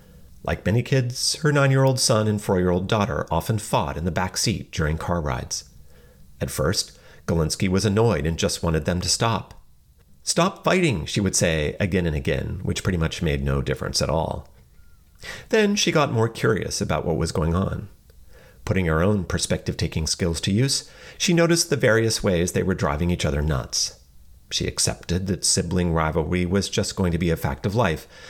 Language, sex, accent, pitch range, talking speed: English, male, American, 80-115 Hz, 185 wpm